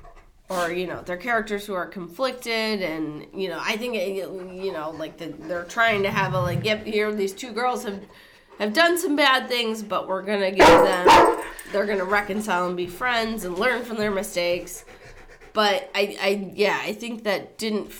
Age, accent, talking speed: 20-39, American, 205 wpm